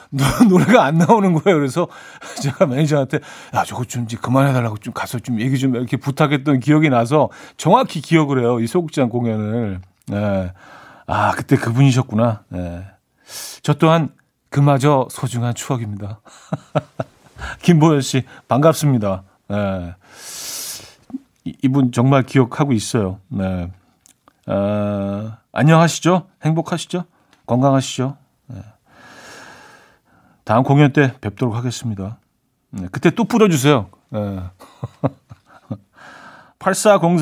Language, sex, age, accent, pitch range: Korean, male, 40-59, native, 115-160 Hz